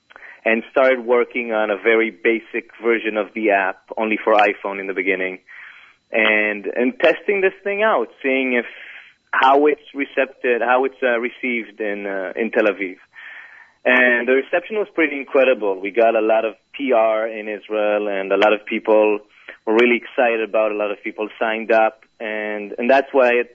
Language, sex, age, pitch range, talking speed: English, male, 30-49, 105-135 Hz, 185 wpm